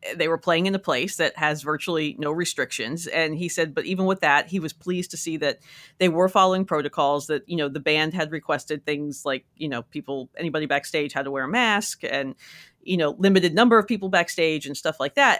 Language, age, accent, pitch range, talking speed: English, 40-59, American, 155-195 Hz, 230 wpm